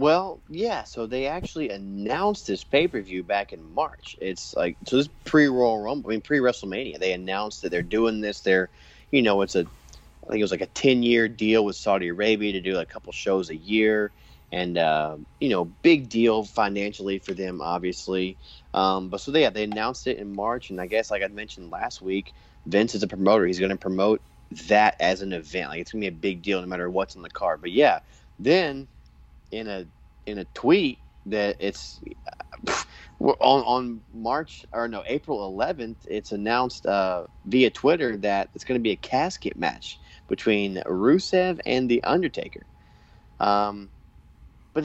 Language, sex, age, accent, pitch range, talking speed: English, male, 30-49, American, 90-110 Hz, 190 wpm